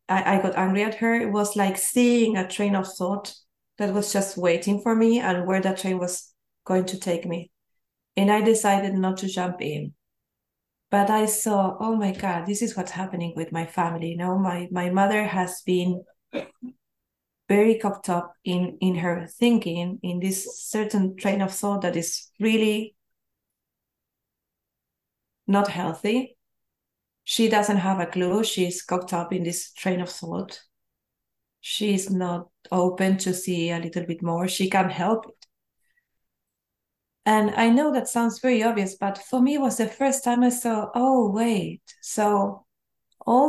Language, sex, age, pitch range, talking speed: English, female, 30-49, 180-220 Hz, 165 wpm